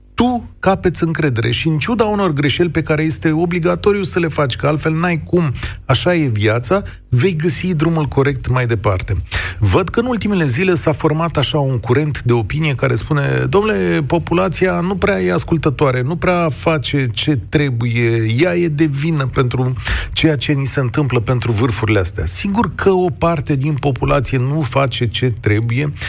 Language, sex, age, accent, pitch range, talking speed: Romanian, male, 40-59, native, 115-170 Hz, 175 wpm